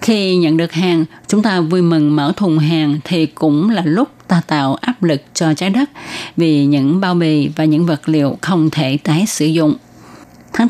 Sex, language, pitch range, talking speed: female, Vietnamese, 155-190 Hz, 200 wpm